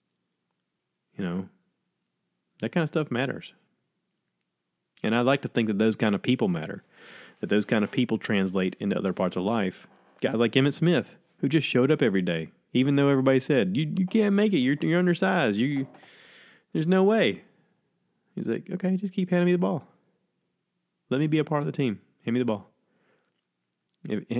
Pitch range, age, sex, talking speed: 105-150 Hz, 30-49, male, 190 wpm